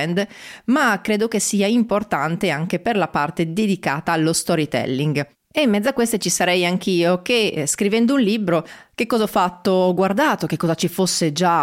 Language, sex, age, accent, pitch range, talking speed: Italian, female, 30-49, native, 170-230 Hz, 180 wpm